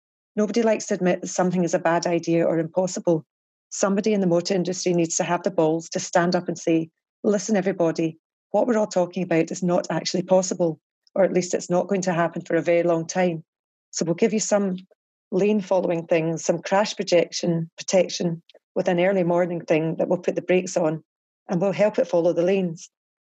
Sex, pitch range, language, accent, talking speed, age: female, 170-195 Hz, English, British, 210 wpm, 30-49